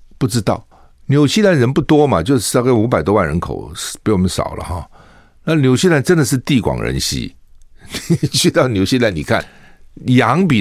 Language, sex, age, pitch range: Chinese, male, 60-79, 80-120 Hz